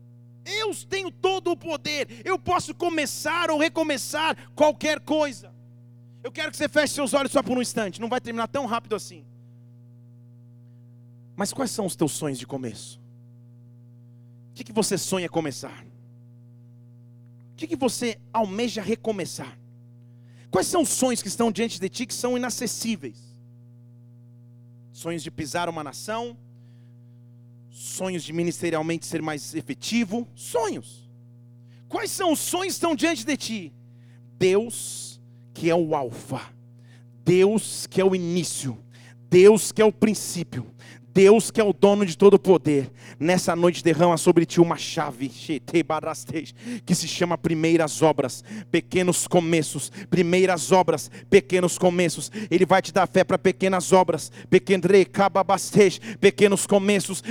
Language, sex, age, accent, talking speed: Portuguese, male, 40-59, Brazilian, 135 wpm